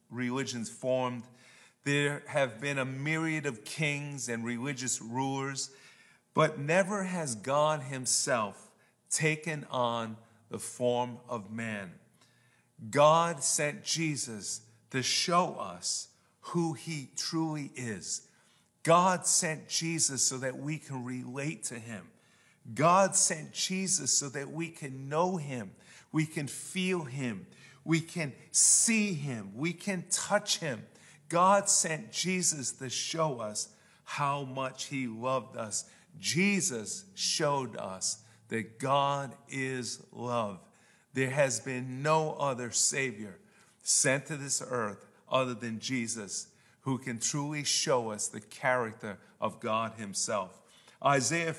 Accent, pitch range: American, 125-160 Hz